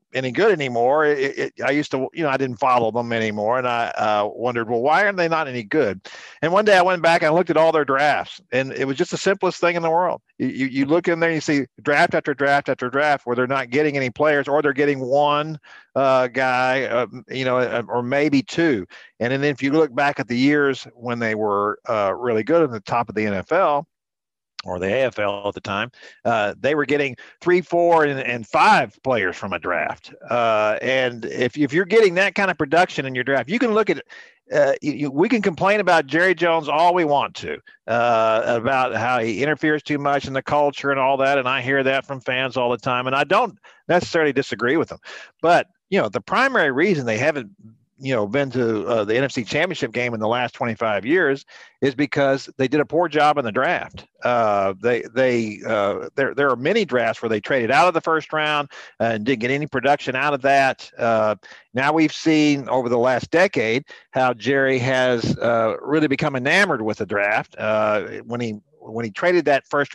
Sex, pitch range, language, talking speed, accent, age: male, 125-155 Hz, English, 225 wpm, American, 50-69